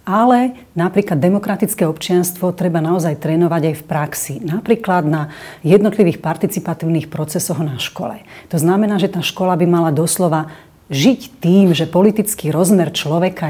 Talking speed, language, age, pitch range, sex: 140 wpm, Slovak, 40-59, 160-195 Hz, female